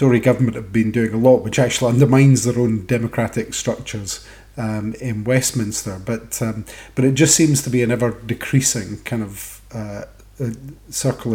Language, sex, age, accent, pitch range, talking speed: English, male, 30-49, British, 105-125 Hz, 170 wpm